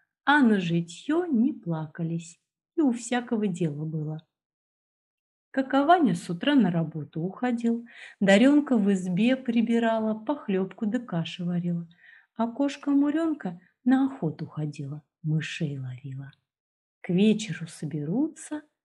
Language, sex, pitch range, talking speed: Russian, female, 170-245 Hz, 110 wpm